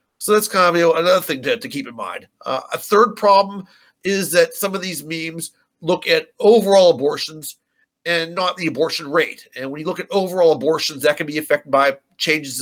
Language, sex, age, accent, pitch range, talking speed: English, male, 50-69, American, 145-185 Hz, 205 wpm